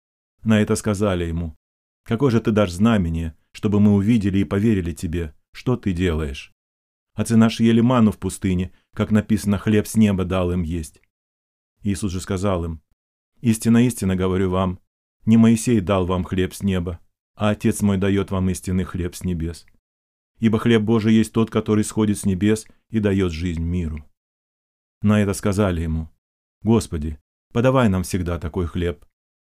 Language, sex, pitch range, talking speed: Russian, male, 90-110 Hz, 160 wpm